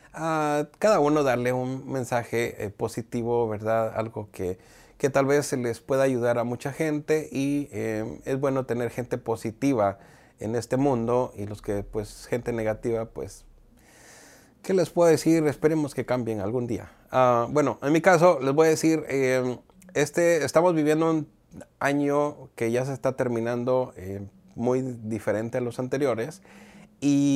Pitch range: 110-140 Hz